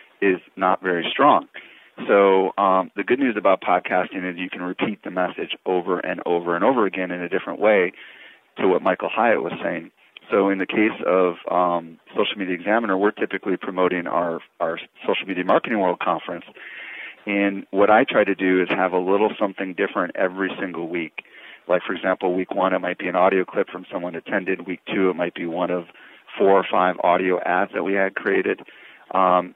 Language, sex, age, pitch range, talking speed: English, male, 40-59, 90-100 Hz, 200 wpm